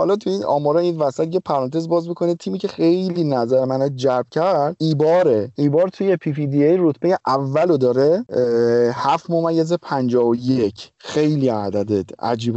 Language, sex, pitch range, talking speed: Persian, male, 130-170 Hz, 145 wpm